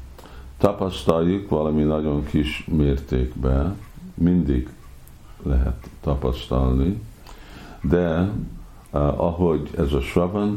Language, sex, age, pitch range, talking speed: Hungarian, male, 50-69, 70-90 Hz, 75 wpm